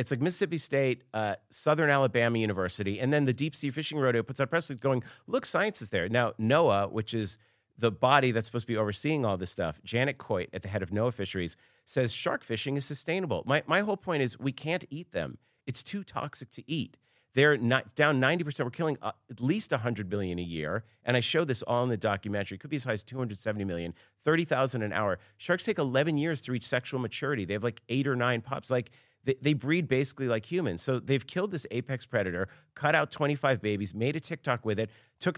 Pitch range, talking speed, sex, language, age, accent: 110-145 Hz, 220 wpm, male, English, 40-59, American